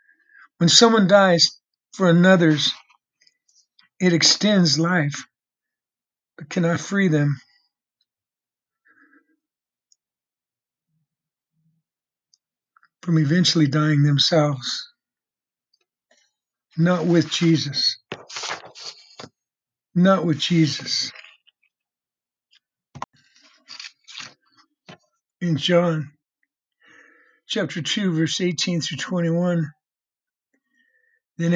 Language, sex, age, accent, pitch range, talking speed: English, male, 60-79, American, 160-195 Hz, 60 wpm